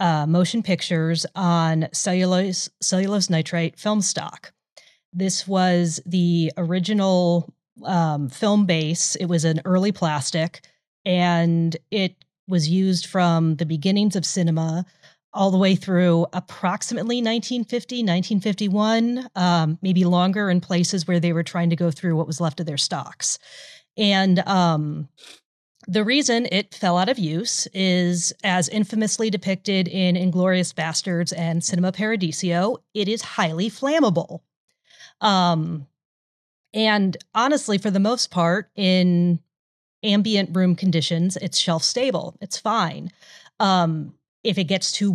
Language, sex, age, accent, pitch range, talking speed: English, female, 30-49, American, 170-200 Hz, 130 wpm